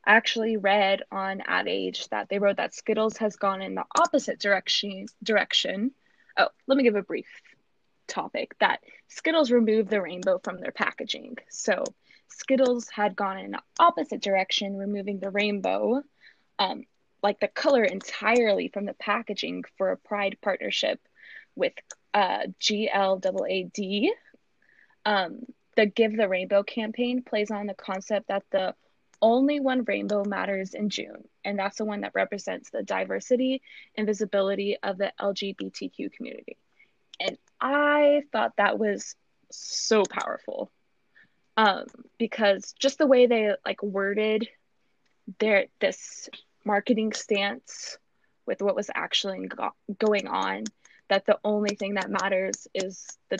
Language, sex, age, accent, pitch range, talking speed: English, female, 20-39, American, 200-255 Hz, 140 wpm